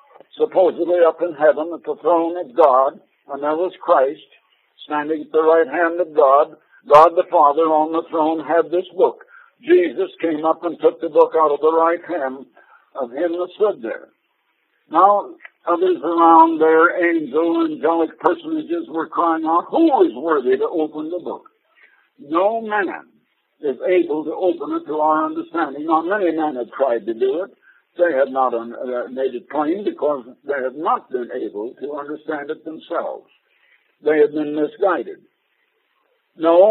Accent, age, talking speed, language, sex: American, 60-79, 170 wpm, English, male